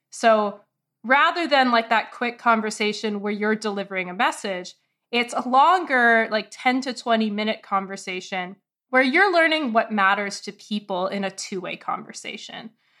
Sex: female